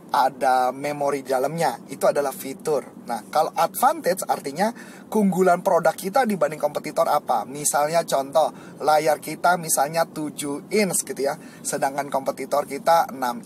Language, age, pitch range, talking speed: Indonesian, 30-49, 150-215 Hz, 130 wpm